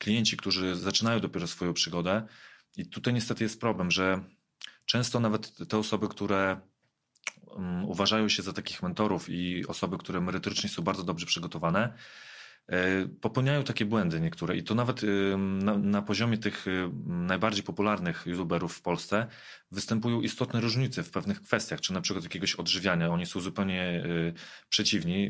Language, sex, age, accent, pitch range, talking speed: Polish, male, 30-49, native, 95-115 Hz, 140 wpm